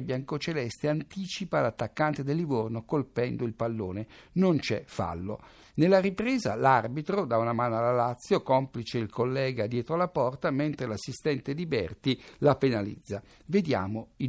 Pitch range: 125-175 Hz